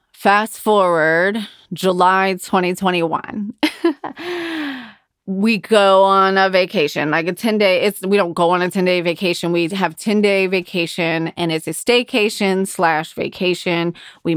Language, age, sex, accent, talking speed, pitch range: English, 20-39, female, American, 130 wpm, 180-245 Hz